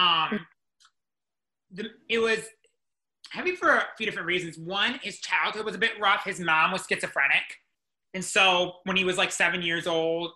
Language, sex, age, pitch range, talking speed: English, male, 30-49, 165-195 Hz, 170 wpm